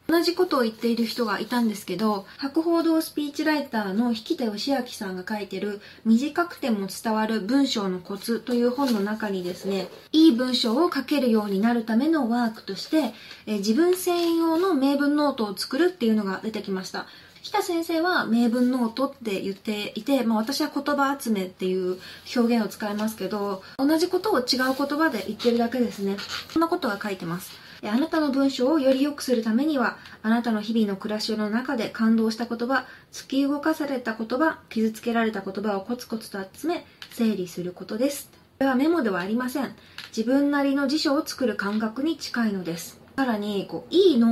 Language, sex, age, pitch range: Japanese, female, 20-39, 205-285 Hz